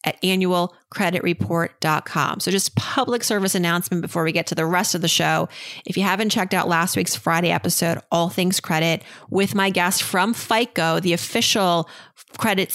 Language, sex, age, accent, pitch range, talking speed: English, female, 30-49, American, 170-225 Hz, 170 wpm